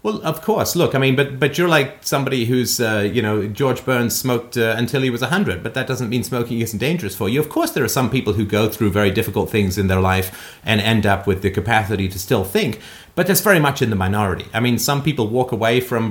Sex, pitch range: male, 105-140 Hz